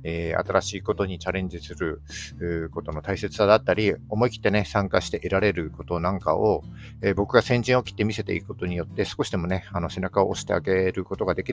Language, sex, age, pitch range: Japanese, male, 50-69, 90-125 Hz